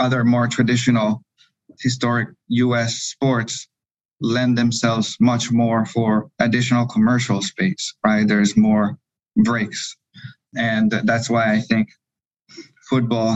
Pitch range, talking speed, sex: 110-125 Hz, 110 wpm, male